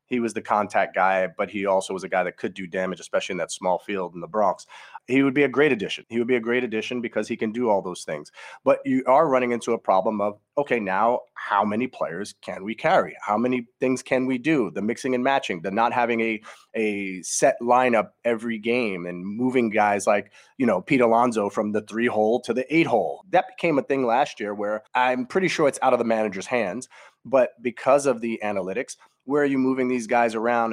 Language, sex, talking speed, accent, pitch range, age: English, male, 235 wpm, American, 105-125 Hz, 30-49